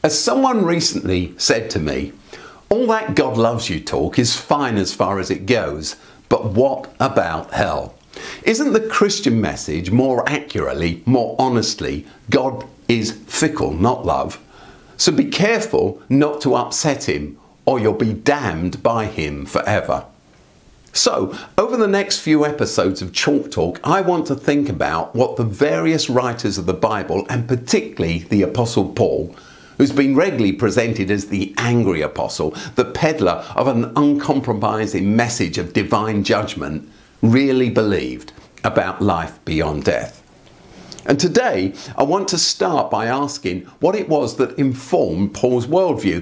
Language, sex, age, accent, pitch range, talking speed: English, male, 50-69, British, 100-145 Hz, 150 wpm